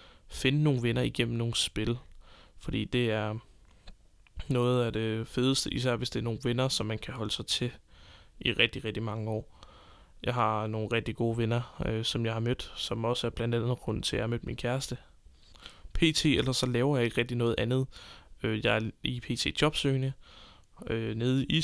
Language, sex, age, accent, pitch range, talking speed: Danish, male, 20-39, native, 110-135 Hz, 195 wpm